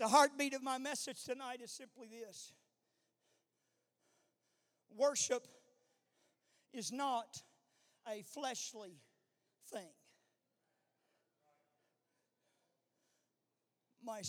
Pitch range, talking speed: 200-295 Hz, 65 wpm